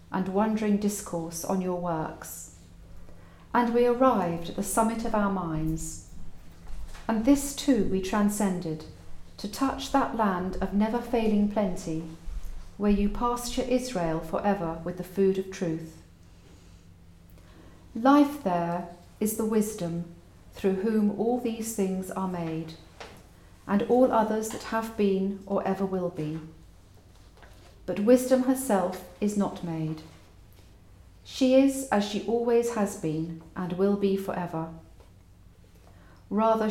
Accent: British